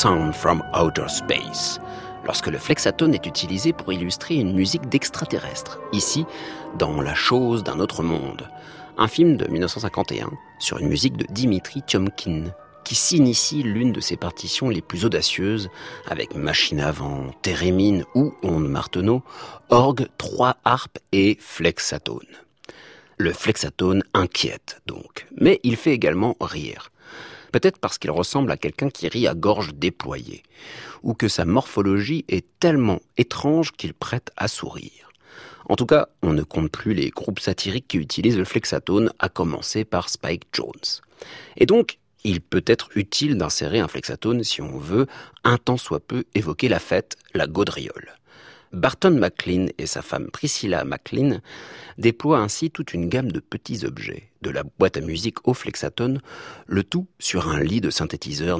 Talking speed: 155 wpm